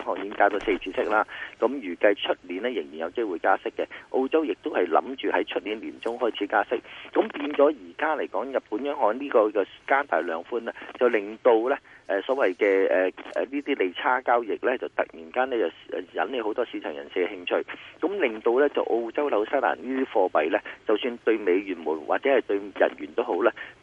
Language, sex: Chinese, male